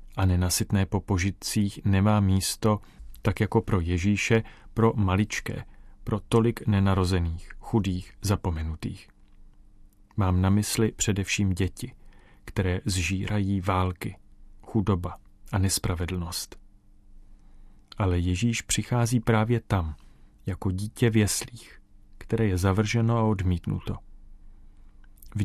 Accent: native